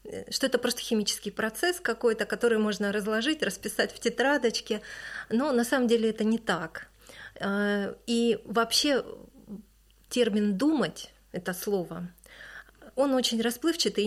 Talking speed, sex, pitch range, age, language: 120 wpm, female, 195-235 Hz, 30-49, Russian